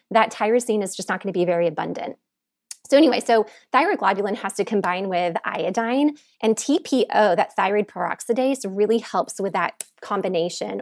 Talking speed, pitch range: 160 wpm, 180-225 Hz